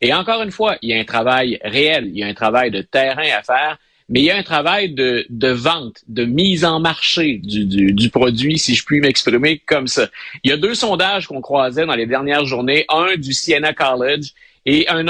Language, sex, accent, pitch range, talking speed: French, male, Canadian, 130-170 Hz, 235 wpm